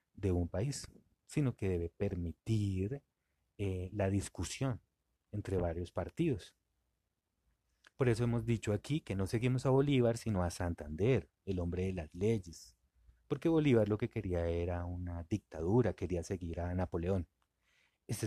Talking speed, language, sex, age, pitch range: 145 wpm, Spanish, male, 30-49, 85-115 Hz